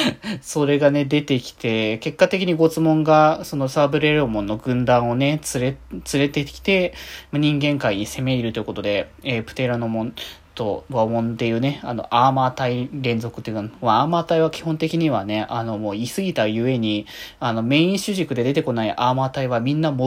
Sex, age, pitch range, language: male, 20-39, 115-160 Hz, Japanese